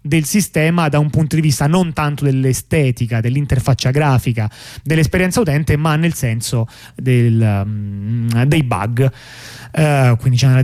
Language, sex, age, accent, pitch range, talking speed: Italian, male, 30-49, native, 125-155 Hz, 140 wpm